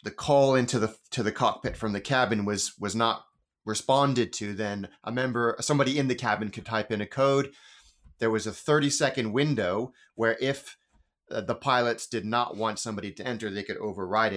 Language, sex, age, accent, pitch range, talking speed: English, male, 30-49, American, 100-125 Hz, 190 wpm